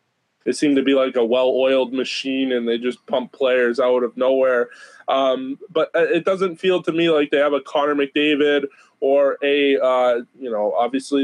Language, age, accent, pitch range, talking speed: English, 20-39, American, 135-170 Hz, 185 wpm